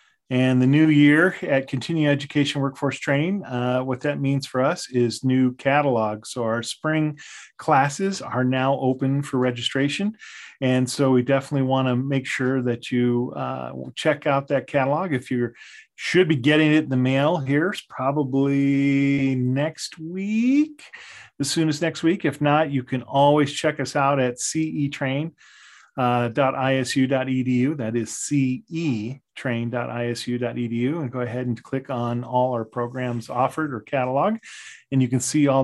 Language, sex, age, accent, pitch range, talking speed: English, male, 40-59, American, 125-150 Hz, 155 wpm